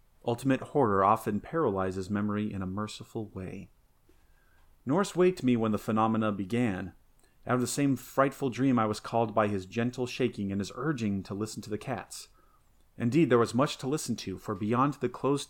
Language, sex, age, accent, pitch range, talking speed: English, male, 30-49, American, 105-130 Hz, 185 wpm